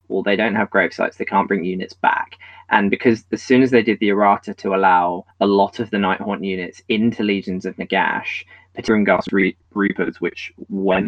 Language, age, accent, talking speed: English, 20-39, British, 210 wpm